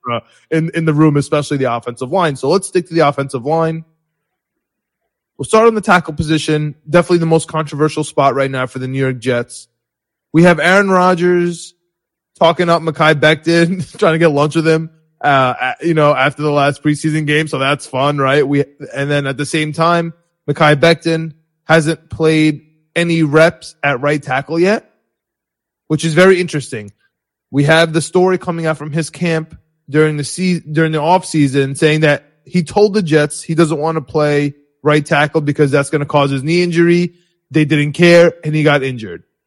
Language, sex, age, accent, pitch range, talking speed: English, male, 20-39, American, 145-170 Hz, 190 wpm